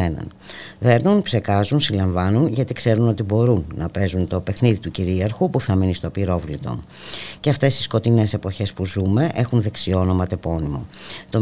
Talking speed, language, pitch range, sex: 160 wpm, Greek, 95-115 Hz, female